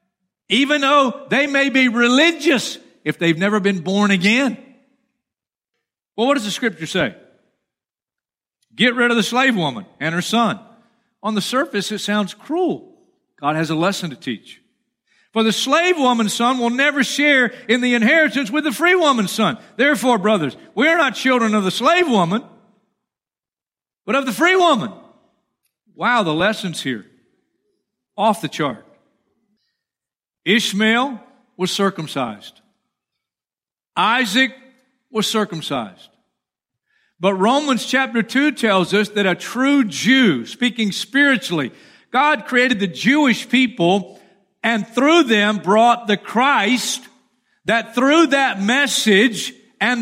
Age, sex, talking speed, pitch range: 50-69, male, 135 wpm, 210-275 Hz